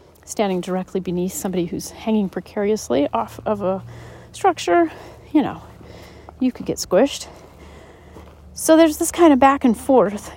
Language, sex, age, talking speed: English, female, 40-59, 145 wpm